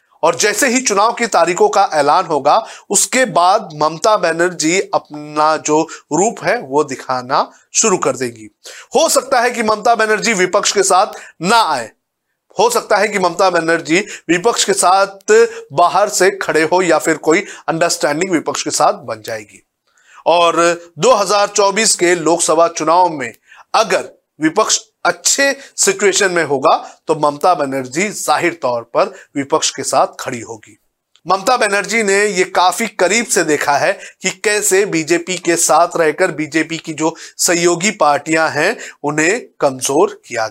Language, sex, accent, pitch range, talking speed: Hindi, male, native, 155-200 Hz, 150 wpm